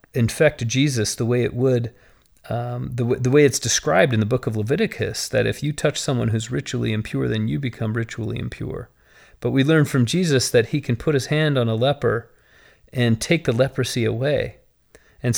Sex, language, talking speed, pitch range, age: male, English, 190 wpm, 120-150 Hz, 40-59